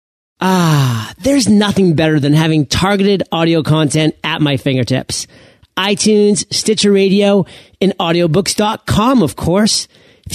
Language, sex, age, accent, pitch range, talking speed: English, male, 30-49, American, 155-205 Hz, 115 wpm